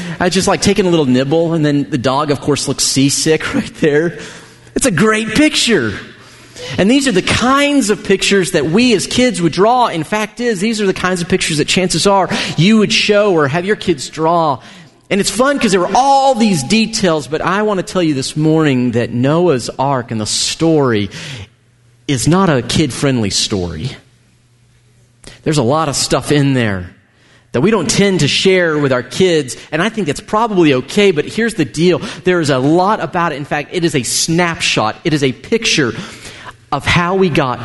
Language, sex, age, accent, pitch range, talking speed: English, male, 40-59, American, 140-195 Hz, 205 wpm